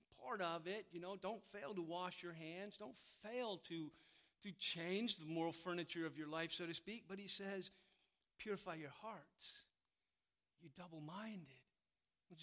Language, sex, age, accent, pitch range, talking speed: English, male, 40-59, American, 160-200 Hz, 160 wpm